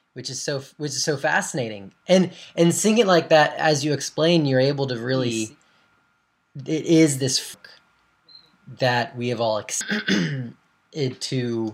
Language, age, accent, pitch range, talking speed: English, 20-39, American, 115-145 Hz, 145 wpm